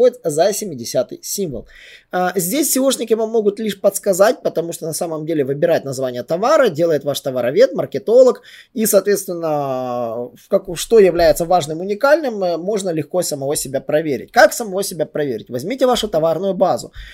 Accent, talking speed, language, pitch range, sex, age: native, 145 wpm, Russian, 145-215 Hz, male, 20-39